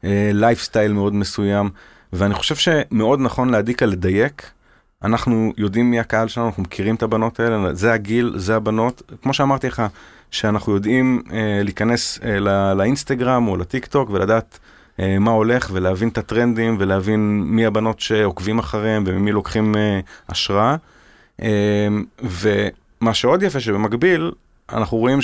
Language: Hebrew